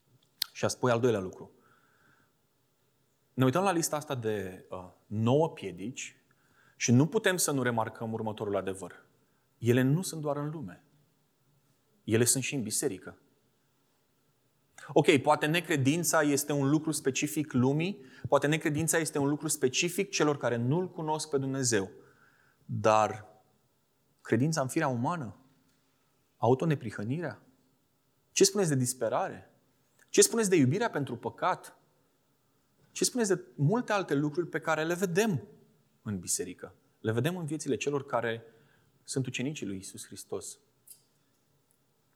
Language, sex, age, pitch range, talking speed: Romanian, male, 30-49, 125-150 Hz, 130 wpm